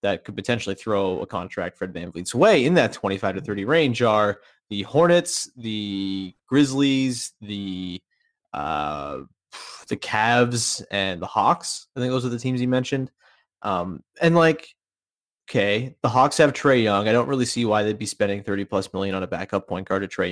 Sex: male